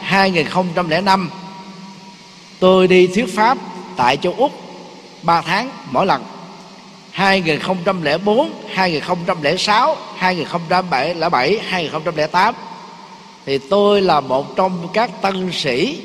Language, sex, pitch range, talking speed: Vietnamese, male, 160-200 Hz, 90 wpm